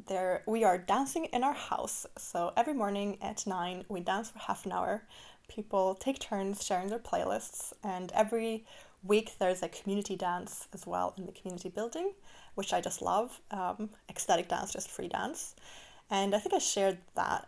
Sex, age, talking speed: female, 20-39, 180 wpm